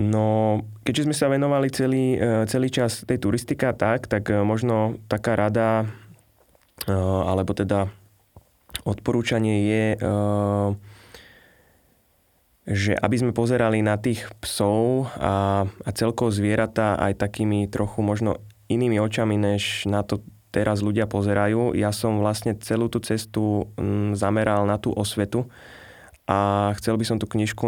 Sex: male